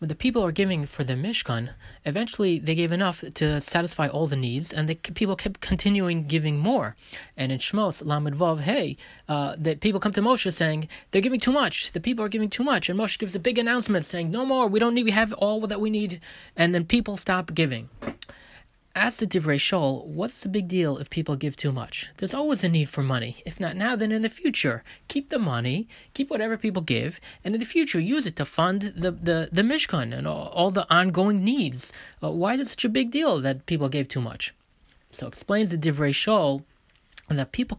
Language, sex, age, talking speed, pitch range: English, male, 30-49, 220 wpm, 155-220 Hz